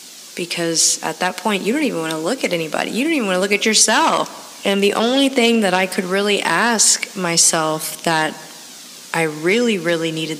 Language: English